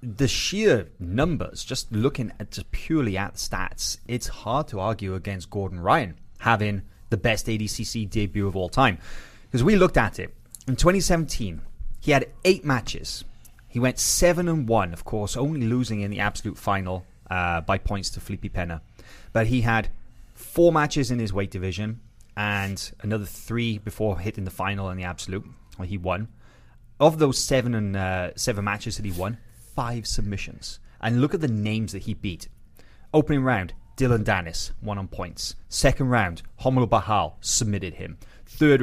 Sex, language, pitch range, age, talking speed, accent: male, English, 100-125 Hz, 20-39, 175 wpm, British